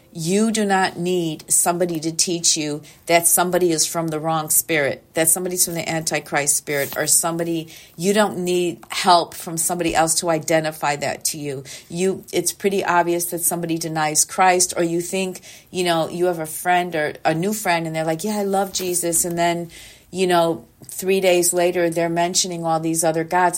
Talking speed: 195 wpm